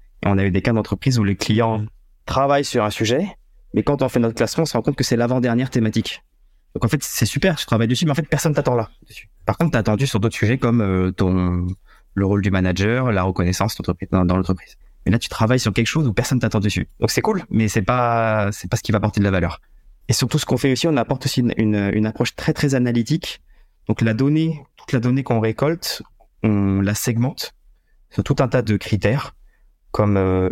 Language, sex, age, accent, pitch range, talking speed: English, male, 20-39, French, 105-135 Hz, 235 wpm